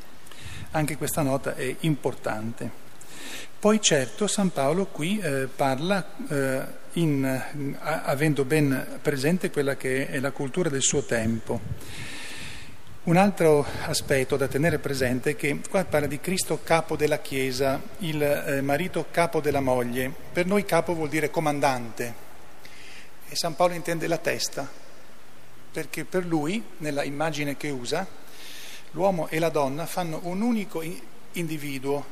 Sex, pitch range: male, 135-170 Hz